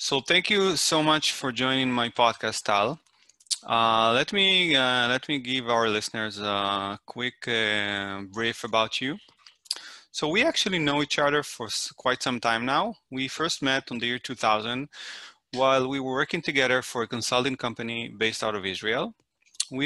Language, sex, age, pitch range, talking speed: English, male, 30-49, 110-135 Hz, 180 wpm